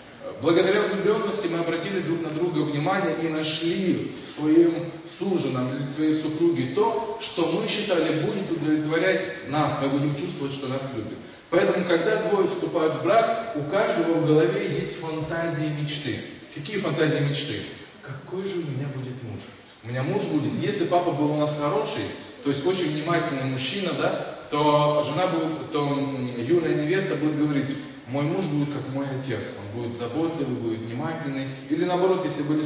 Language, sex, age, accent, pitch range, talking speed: Russian, male, 20-39, native, 140-175 Hz, 165 wpm